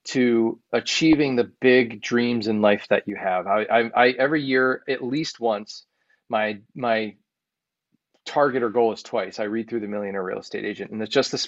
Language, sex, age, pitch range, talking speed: English, male, 30-49, 110-130 Hz, 195 wpm